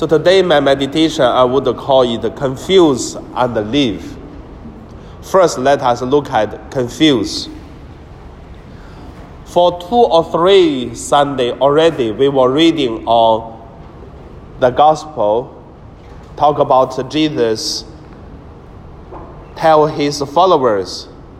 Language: Chinese